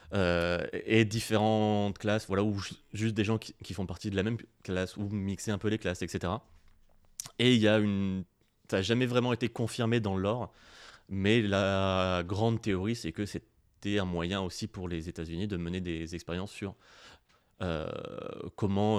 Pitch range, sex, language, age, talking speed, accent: 90-105 Hz, male, French, 30-49, 185 wpm, French